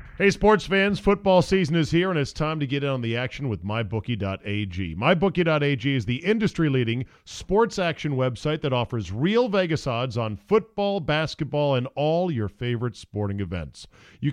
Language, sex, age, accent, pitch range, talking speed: English, male, 40-59, American, 115-175 Hz, 170 wpm